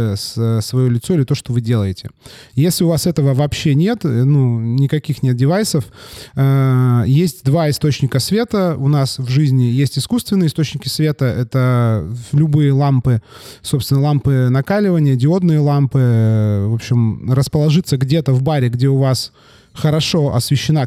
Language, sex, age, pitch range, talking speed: Russian, male, 20-39, 125-150 Hz, 140 wpm